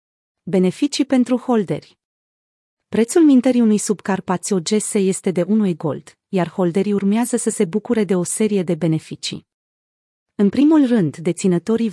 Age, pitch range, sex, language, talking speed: 30-49, 180-220 Hz, female, Romanian, 130 wpm